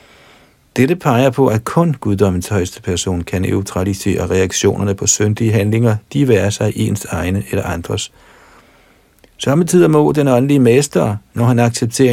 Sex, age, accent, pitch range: male, 50-69, native, 95-120 Hz